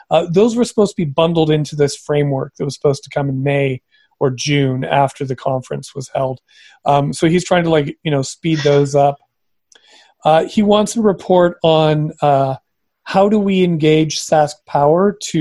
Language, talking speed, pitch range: English, 195 wpm, 140-165 Hz